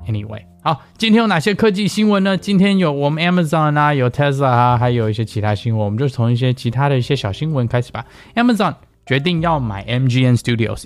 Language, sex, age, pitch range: Chinese, male, 20-39, 105-135 Hz